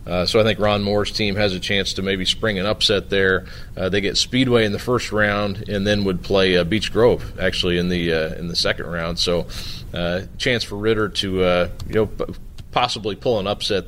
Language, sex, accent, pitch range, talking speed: English, male, American, 95-110 Hz, 225 wpm